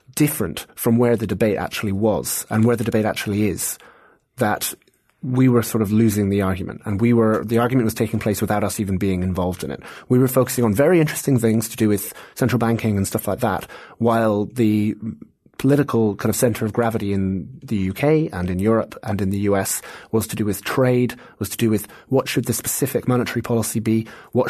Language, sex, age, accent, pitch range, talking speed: English, male, 30-49, British, 105-125 Hz, 215 wpm